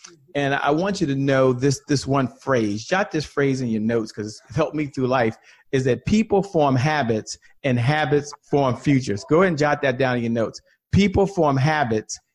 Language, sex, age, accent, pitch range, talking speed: English, male, 40-59, American, 125-155 Hz, 210 wpm